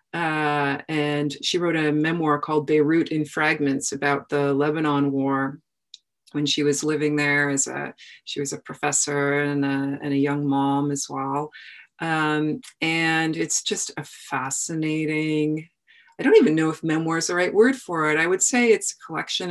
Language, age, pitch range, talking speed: English, 30-49, 145-165 Hz, 170 wpm